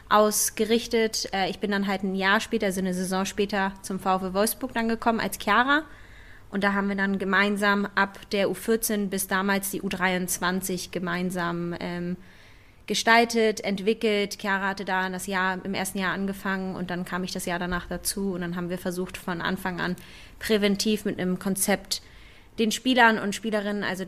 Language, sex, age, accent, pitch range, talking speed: German, female, 20-39, German, 185-210 Hz, 175 wpm